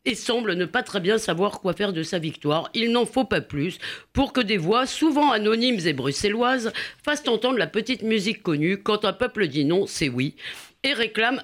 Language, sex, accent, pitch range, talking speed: French, female, French, 160-225 Hz, 210 wpm